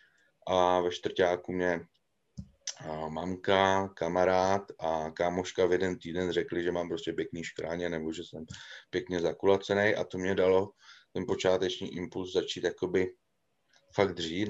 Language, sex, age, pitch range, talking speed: Slovak, male, 30-49, 85-90 Hz, 140 wpm